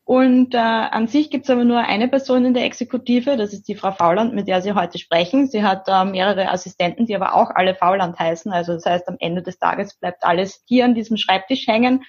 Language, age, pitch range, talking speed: German, 20-39, 195-230 Hz, 240 wpm